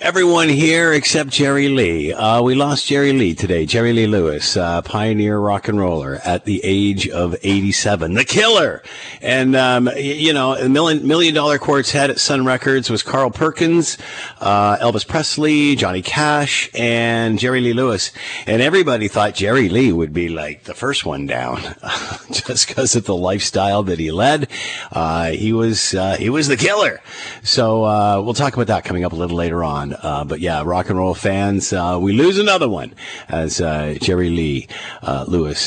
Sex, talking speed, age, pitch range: male, 185 wpm, 50-69, 90-125 Hz